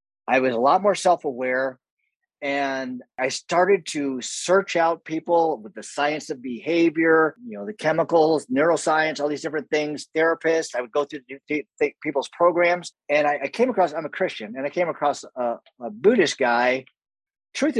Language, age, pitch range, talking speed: English, 50-69, 130-170 Hz, 170 wpm